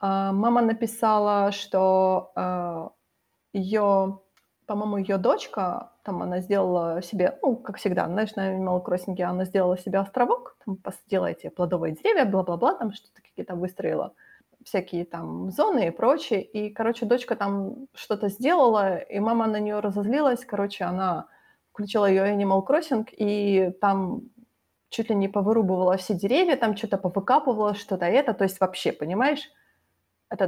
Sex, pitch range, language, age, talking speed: female, 190-235 Hz, Ukrainian, 30-49, 140 wpm